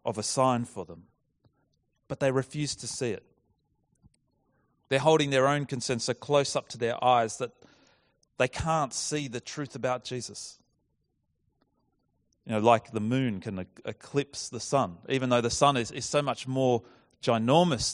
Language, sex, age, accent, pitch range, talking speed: English, male, 30-49, Australian, 110-140 Hz, 165 wpm